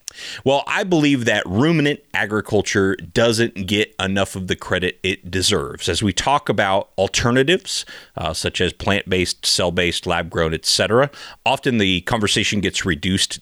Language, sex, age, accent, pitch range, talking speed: English, male, 30-49, American, 90-115 Hz, 145 wpm